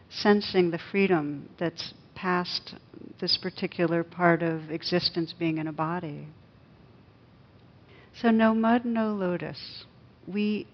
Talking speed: 110 wpm